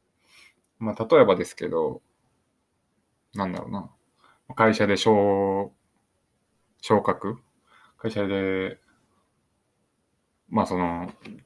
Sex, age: male, 20-39